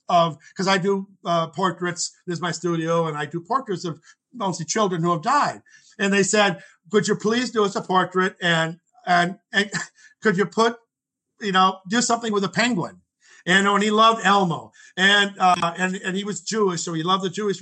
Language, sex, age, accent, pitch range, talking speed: English, male, 50-69, American, 175-210 Hz, 205 wpm